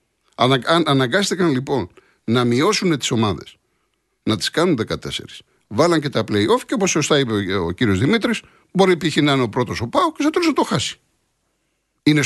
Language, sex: Greek, male